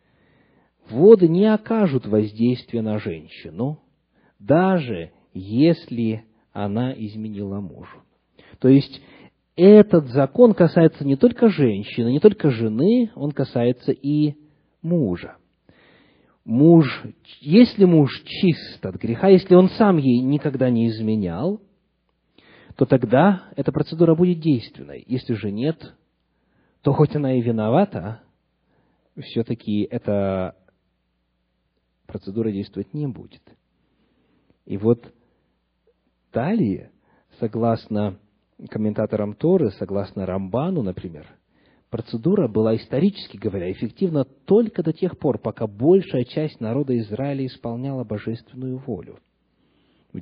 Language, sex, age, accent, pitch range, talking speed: Russian, male, 40-59, native, 105-160 Hz, 105 wpm